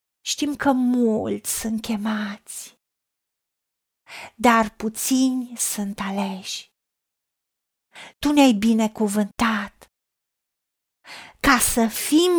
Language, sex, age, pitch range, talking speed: Romanian, female, 30-49, 235-310 Hz, 75 wpm